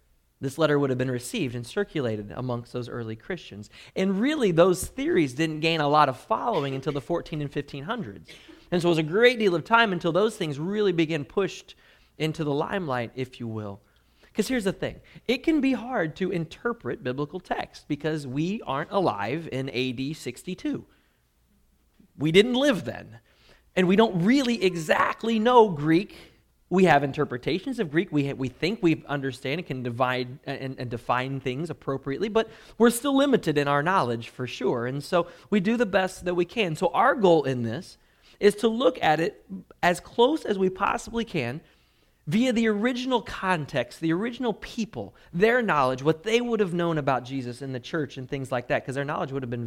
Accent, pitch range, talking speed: American, 130-205 Hz, 195 wpm